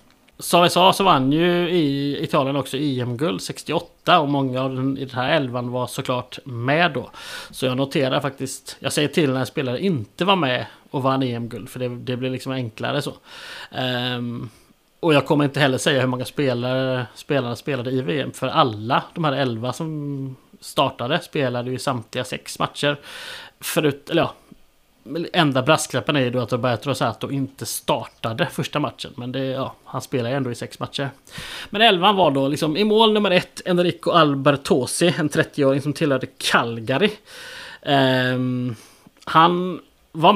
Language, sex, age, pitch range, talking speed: Swedish, male, 30-49, 130-160 Hz, 170 wpm